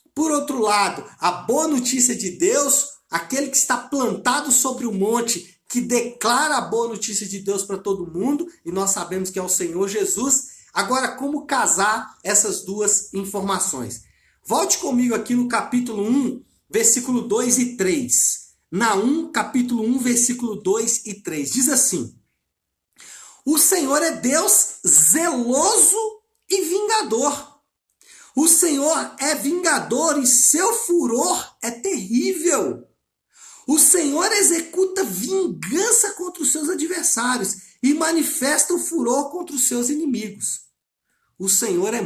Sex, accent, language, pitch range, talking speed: male, Brazilian, Portuguese, 190-295 Hz, 135 wpm